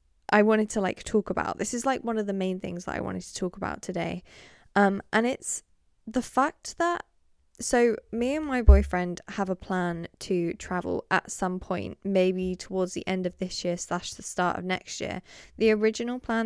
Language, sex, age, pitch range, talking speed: English, female, 10-29, 180-225 Hz, 205 wpm